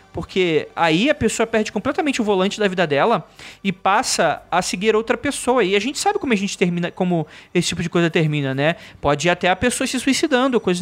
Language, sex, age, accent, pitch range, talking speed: Portuguese, male, 20-39, Brazilian, 160-210 Hz, 220 wpm